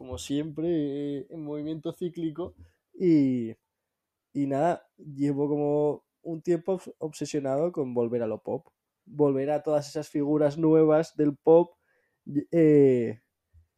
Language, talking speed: Spanish, 120 wpm